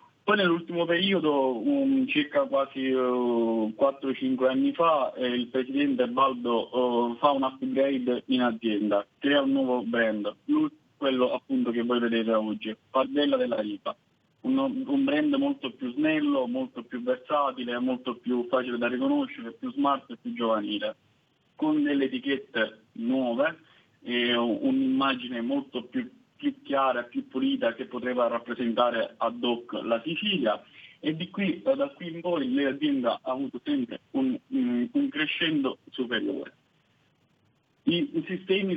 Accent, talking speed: native, 130 wpm